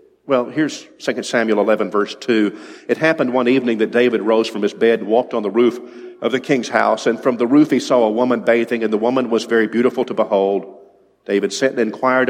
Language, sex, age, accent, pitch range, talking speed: English, male, 50-69, American, 115-140 Hz, 230 wpm